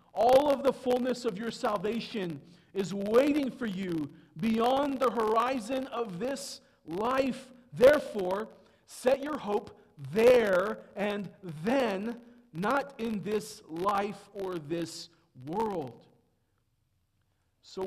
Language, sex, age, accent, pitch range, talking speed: English, male, 50-69, American, 120-180 Hz, 105 wpm